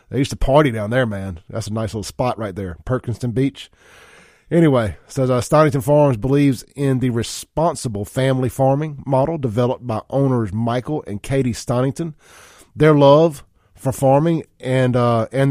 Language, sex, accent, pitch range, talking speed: English, male, American, 115-145 Hz, 165 wpm